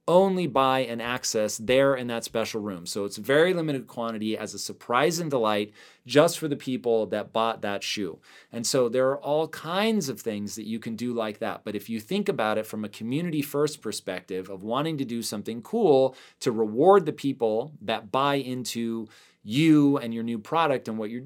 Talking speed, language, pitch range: 205 wpm, English, 110-140 Hz